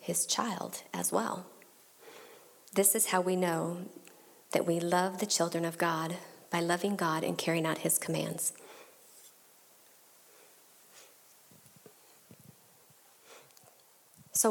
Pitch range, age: 185-280 Hz, 40-59